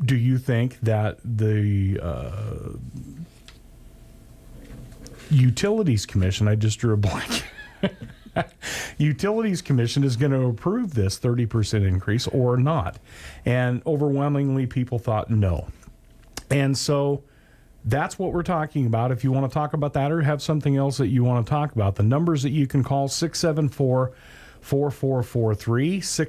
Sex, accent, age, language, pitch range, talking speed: male, American, 40-59, English, 110-145 Hz, 135 wpm